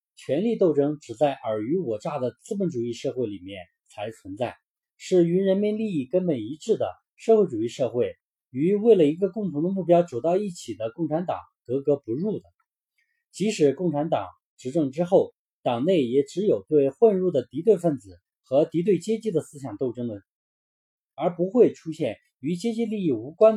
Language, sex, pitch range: Chinese, male, 135-205 Hz